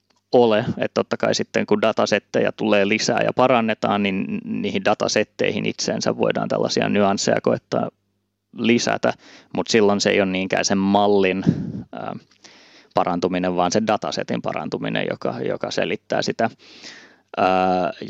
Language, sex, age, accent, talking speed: Finnish, male, 20-39, native, 130 wpm